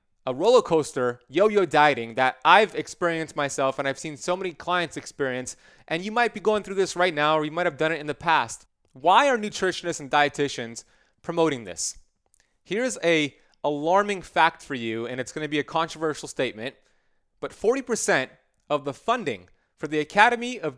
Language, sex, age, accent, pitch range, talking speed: English, male, 30-49, American, 145-195 Hz, 185 wpm